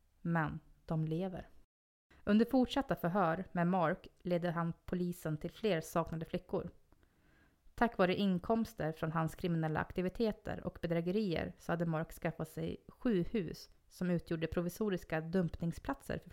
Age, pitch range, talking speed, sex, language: 30-49, 165-195 Hz, 130 wpm, female, Swedish